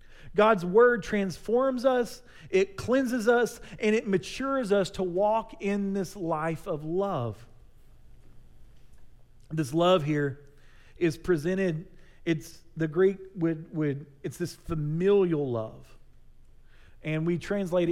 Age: 40-59